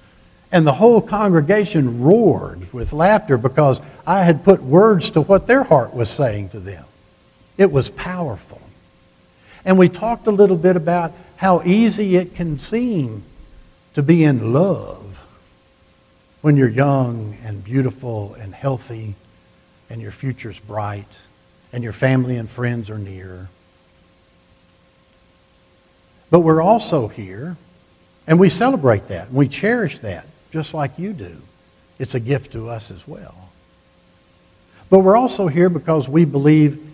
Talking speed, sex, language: 140 wpm, male, English